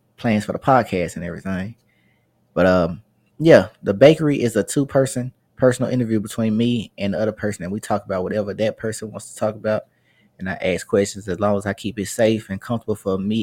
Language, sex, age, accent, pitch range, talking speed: English, male, 20-39, American, 95-110 Hz, 220 wpm